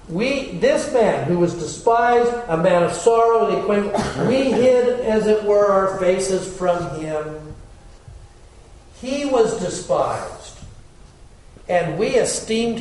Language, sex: English, male